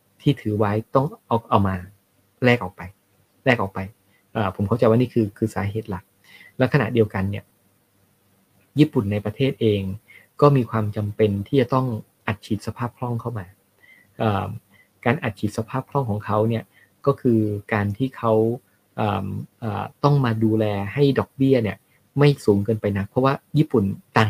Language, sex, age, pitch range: Thai, male, 20-39, 100-125 Hz